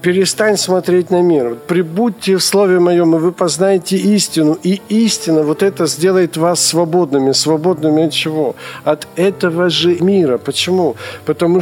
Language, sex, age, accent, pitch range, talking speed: Ukrainian, male, 50-69, native, 160-185 Hz, 145 wpm